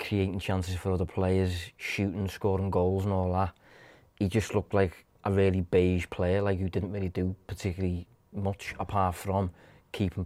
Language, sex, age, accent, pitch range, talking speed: English, male, 20-39, British, 90-105 Hz, 170 wpm